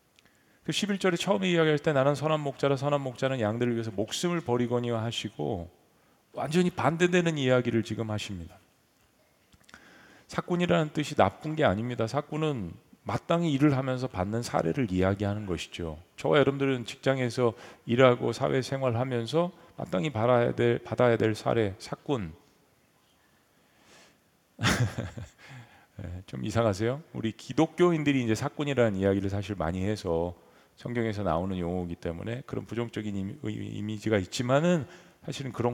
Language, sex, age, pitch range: Korean, male, 40-59, 100-140 Hz